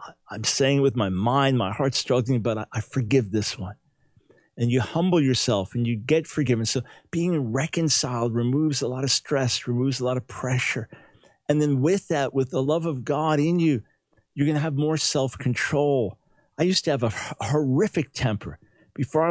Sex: male